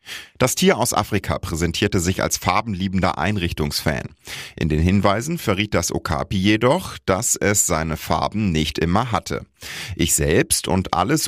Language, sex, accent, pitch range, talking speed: German, male, German, 85-115 Hz, 145 wpm